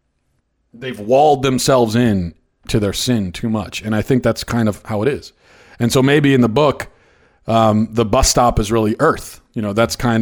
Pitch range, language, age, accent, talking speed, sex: 100-125 Hz, English, 40-59, American, 205 wpm, male